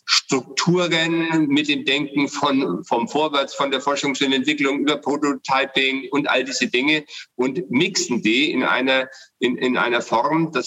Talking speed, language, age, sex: 155 wpm, German, 50-69, male